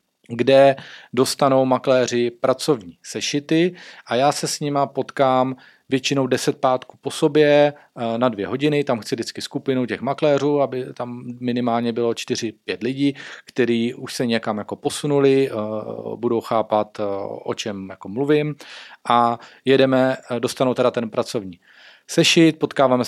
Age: 40-59